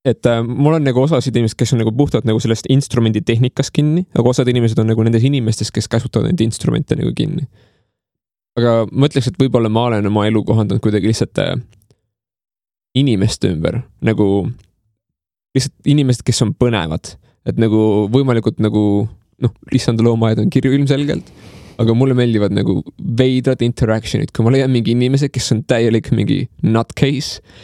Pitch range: 110-135 Hz